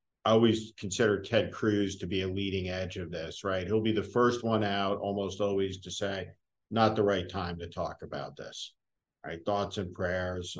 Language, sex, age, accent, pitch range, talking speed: English, male, 50-69, American, 95-110 Hz, 200 wpm